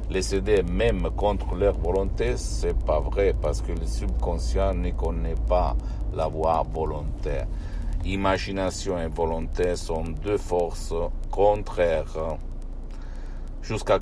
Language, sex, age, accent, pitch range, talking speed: Italian, male, 60-79, native, 80-95 Hz, 120 wpm